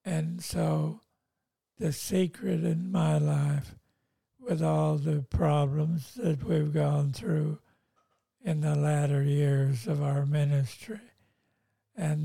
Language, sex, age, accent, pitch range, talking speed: English, male, 60-79, American, 145-165 Hz, 115 wpm